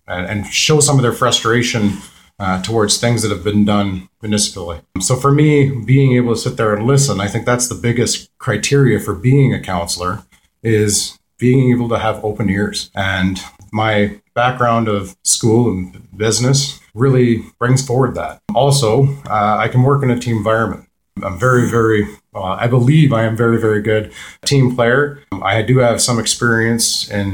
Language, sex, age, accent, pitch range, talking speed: English, male, 30-49, American, 105-125 Hz, 175 wpm